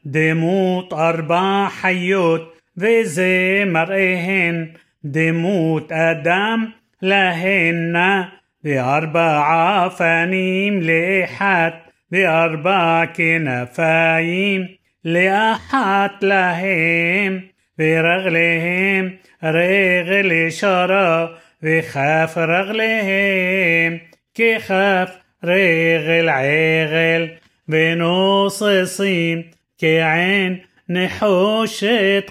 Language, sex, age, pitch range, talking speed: Hebrew, male, 30-49, 165-190 Hz, 60 wpm